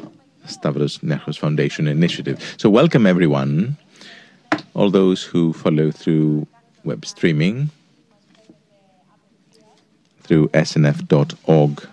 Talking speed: 80 wpm